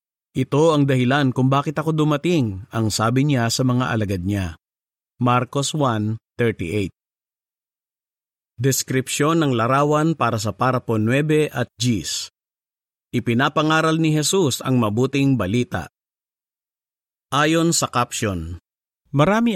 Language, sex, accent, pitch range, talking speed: Filipino, male, native, 115-155 Hz, 105 wpm